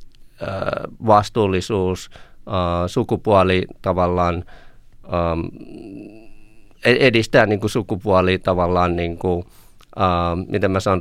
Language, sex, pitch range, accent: Finnish, male, 90-105 Hz, native